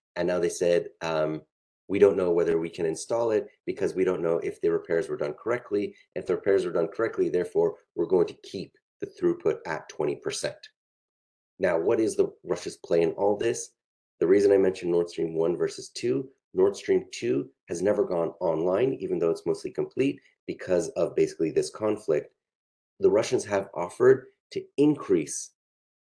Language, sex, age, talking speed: English, male, 30-49, 180 wpm